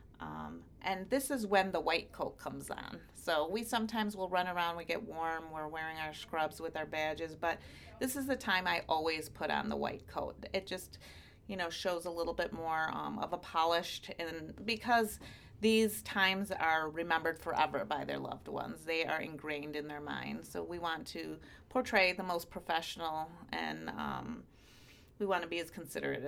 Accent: American